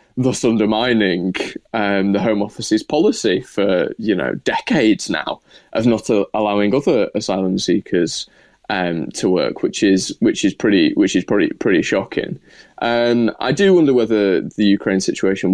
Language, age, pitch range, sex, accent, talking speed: English, 20-39, 95-110 Hz, male, British, 155 wpm